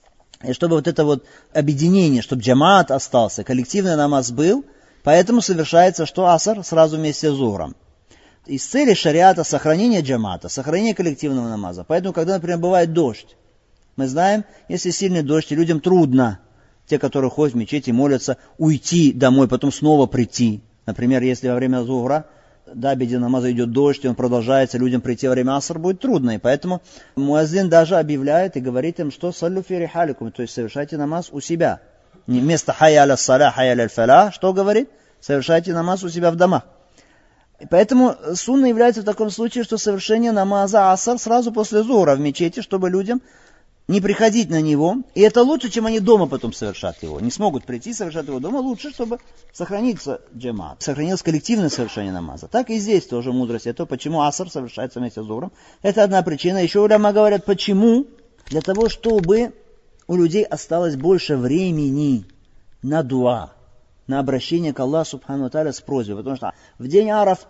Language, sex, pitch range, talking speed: Russian, male, 130-195 Hz, 165 wpm